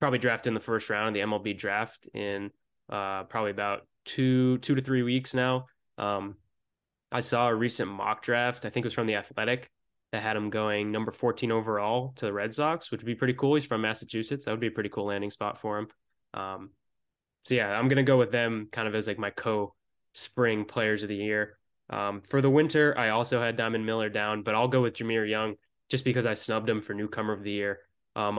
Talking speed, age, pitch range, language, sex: 230 wpm, 20-39, 105-125 Hz, English, male